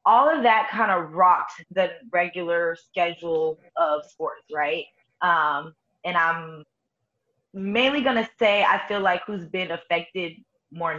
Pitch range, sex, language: 175-255 Hz, female, English